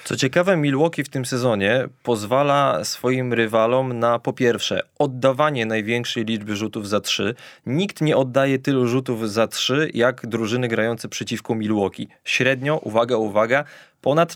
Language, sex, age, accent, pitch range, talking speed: Polish, male, 20-39, native, 115-145 Hz, 140 wpm